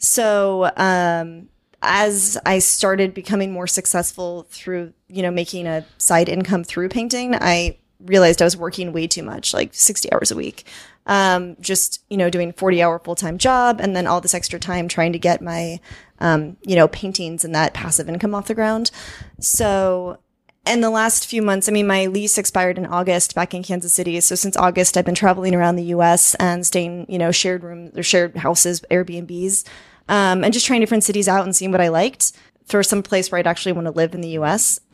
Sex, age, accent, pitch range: female, 20-39, American, 175-200 Hz